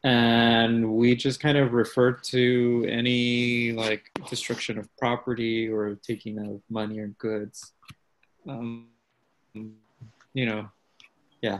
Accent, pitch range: American, 110-140 Hz